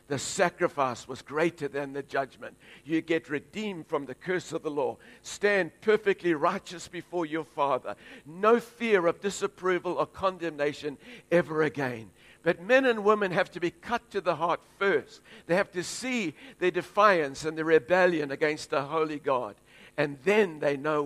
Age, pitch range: 60-79, 145-200 Hz